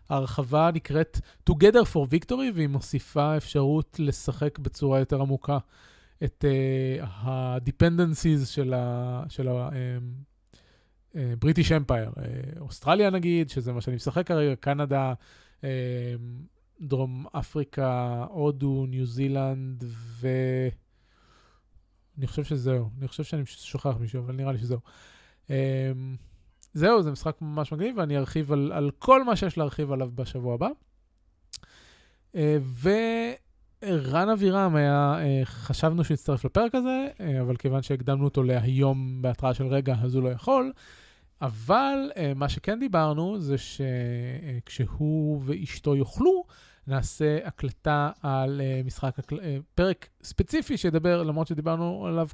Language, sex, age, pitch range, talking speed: Hebrew, male, 20-39, 130-160 Hz, 120 wpm